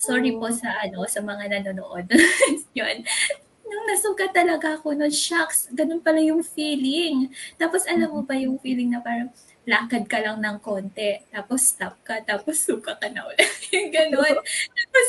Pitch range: 235-335 Hz